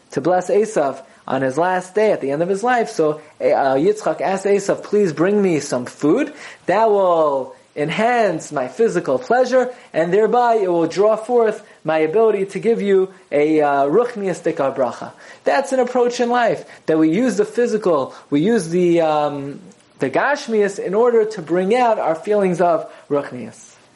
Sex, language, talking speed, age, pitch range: male, English, 175 wpm, 30-49, 150-215 Hz